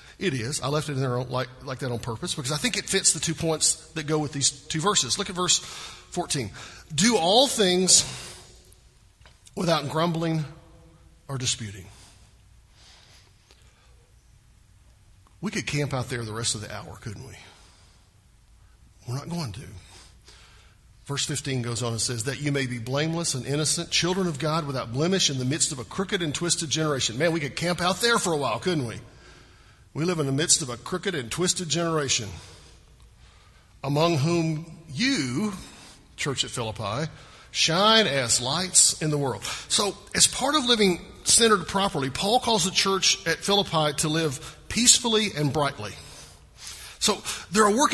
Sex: male